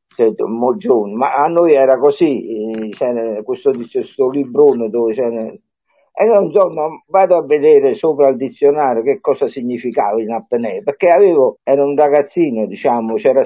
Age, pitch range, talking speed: 60-79, 150-215 Hz, 135 wpm